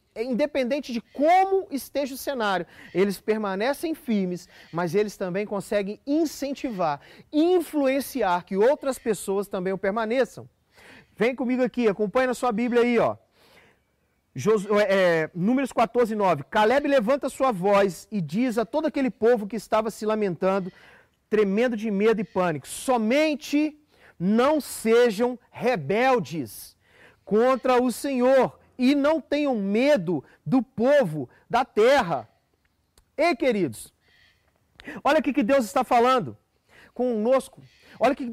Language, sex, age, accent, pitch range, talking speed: Gujarati, male, 40-59, Brazilian, 205-275 Hz, 135 wpm